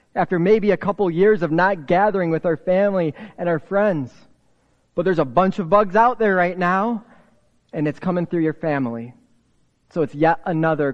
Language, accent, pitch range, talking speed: English, American, 135-170 Hz, 185 wpm